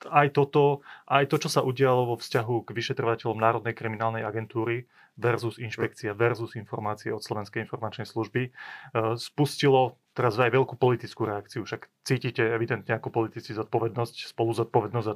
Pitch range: 115-135 Hz